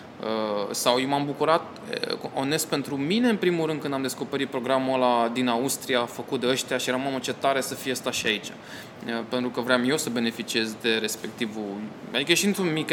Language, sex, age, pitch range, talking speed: Romanian, male, 20-39, 125-170 Hz, 190 wpm